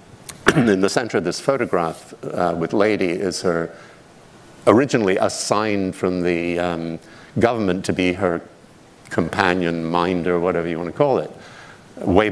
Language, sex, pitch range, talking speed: English, male, 85-100 Hz, 140 wpm